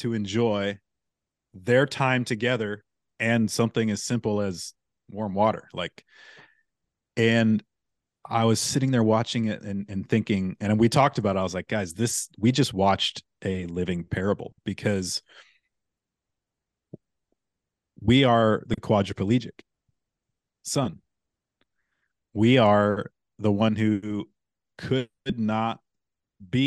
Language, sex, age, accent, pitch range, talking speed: English, male, 30-49, American, 105-125 Hz, 120 wpm